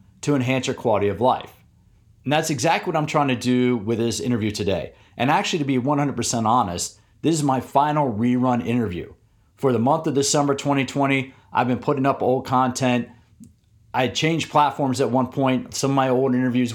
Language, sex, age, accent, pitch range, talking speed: English, male, 40-59, American, 115-145 Hz, 195 wpm